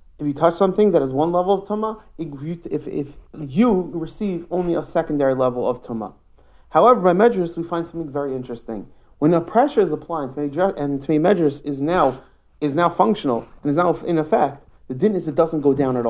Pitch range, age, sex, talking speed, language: 140-185 Hz, 30-49, male, 200 wpm, English